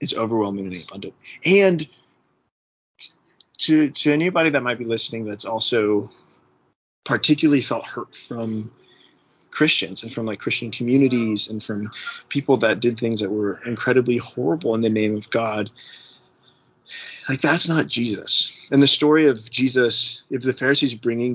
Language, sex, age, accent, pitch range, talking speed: English, male, 30-49, American, 110-135 Hz, 145 wpm